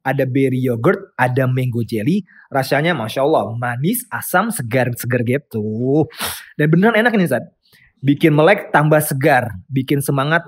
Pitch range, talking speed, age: 135-185 Hz, 150 wpm, 20-39